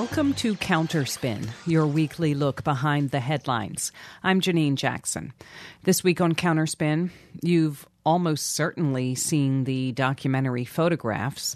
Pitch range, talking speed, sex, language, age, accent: 130-160 Hz, 120 wpm, female, English, 40-59, American